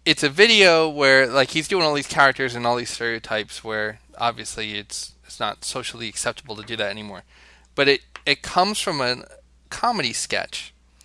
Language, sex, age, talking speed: English, male, 20-39, 180 wpm